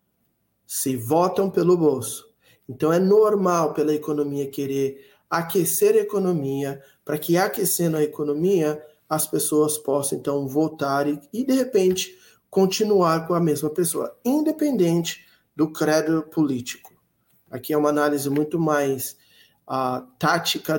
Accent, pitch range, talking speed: Brazilian, 155-220 Hz, 120 wpm